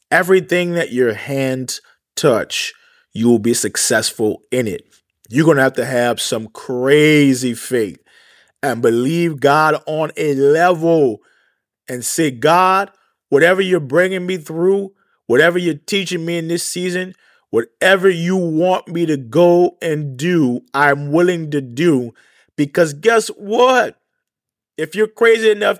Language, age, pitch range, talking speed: English, 30-49, 140-200 Hz, 140 wpm